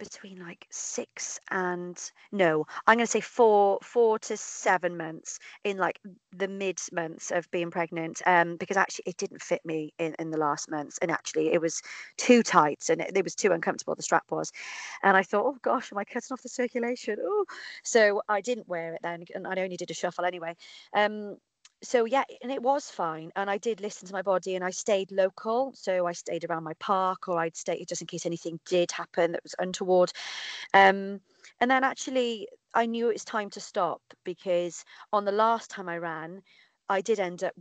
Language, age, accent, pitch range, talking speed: English, 40-59, British, 170-210 Hz, 210 wpm